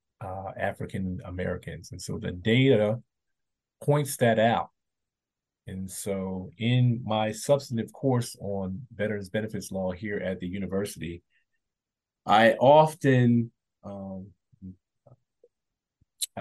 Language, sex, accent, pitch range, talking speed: English, male, American, 100-115 Hz, 100 wpm